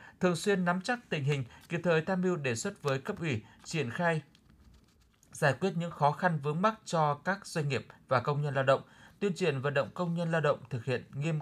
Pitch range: 125-170 Hz